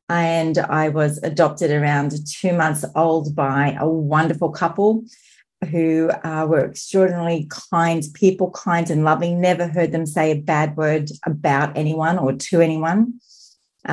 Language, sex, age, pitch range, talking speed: English, female, 40-59, 155-195 Hz, 145 wpm